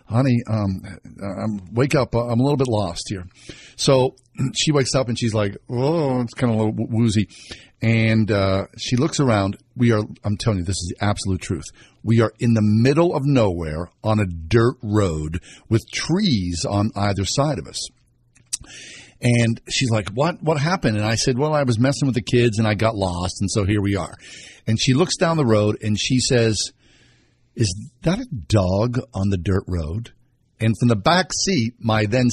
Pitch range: 105-135 Hz